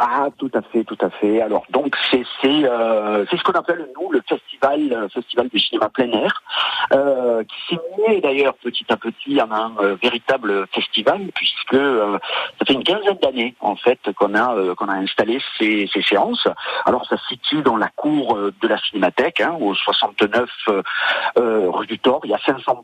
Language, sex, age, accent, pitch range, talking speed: French, male, 50-69, French, 115-150 Hz, 190 wpm